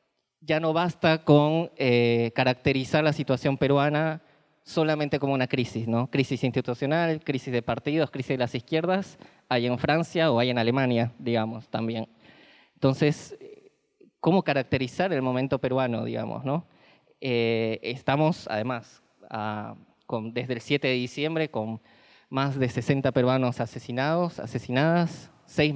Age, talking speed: 20-39, 135 wpm